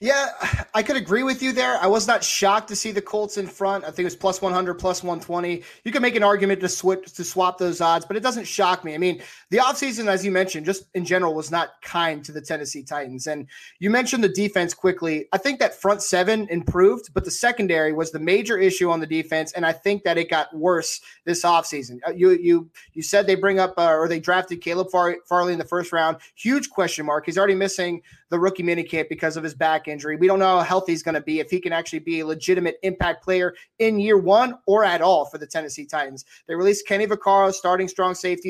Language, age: English, 30-49